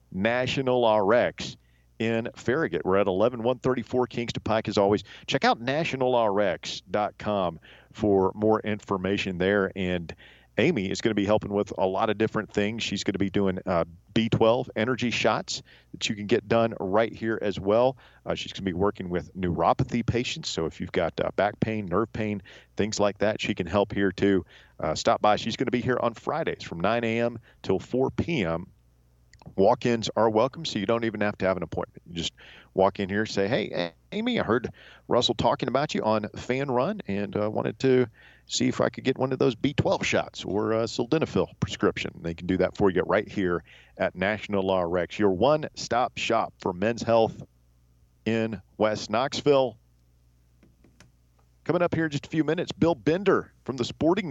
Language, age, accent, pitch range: English, 40-59, American, 95-120 Hz